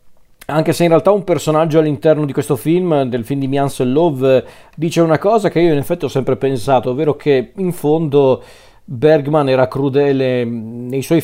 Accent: native